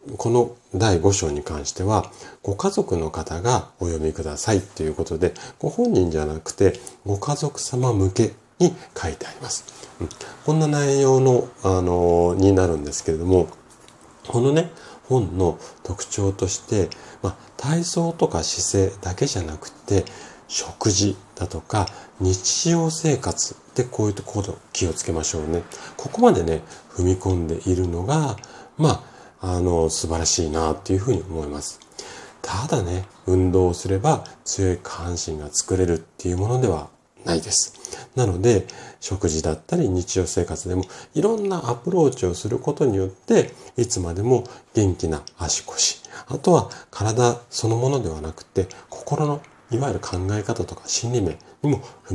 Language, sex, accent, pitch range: Japanese, male, native, 85-120 Hz